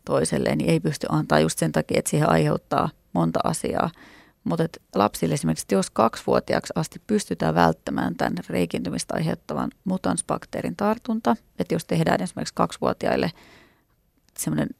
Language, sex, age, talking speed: Finnish, female, 30-49, 130 wpm